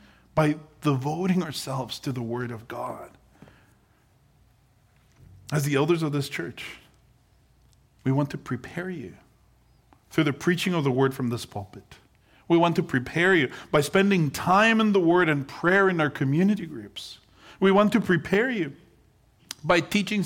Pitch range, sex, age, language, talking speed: 125-165 Hz, male, 50-69, English, 155 wpm